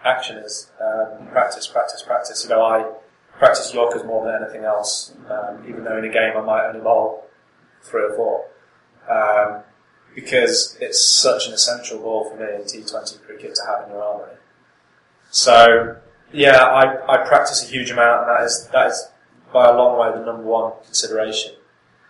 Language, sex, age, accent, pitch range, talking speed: English, male, 20-39, British, 110-130 Hz, 180 wpm